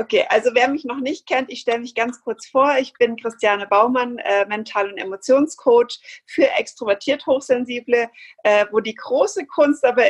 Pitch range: 205-255 Hz